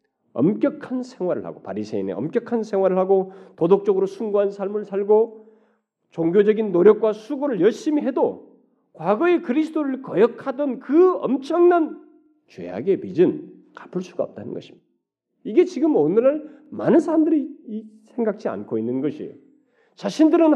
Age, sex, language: 40-59, male, Korean